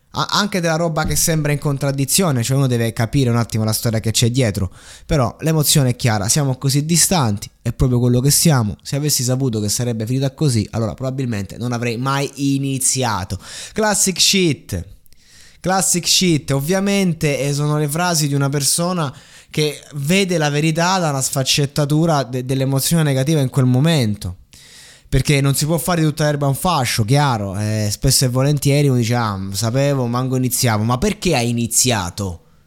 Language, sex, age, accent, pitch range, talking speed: Italian, male, 20-39, native, 115-160 Hz, 165 wpm